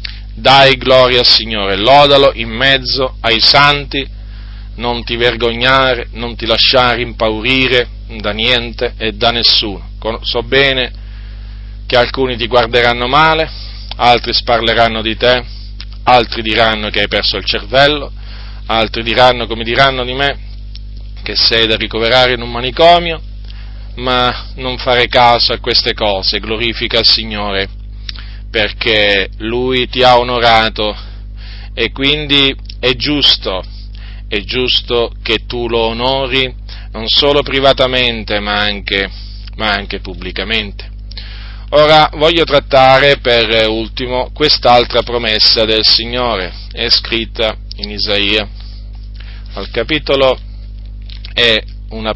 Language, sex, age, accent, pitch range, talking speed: Italian, male, 40-59, native, 100-125 Hz, 115 wpm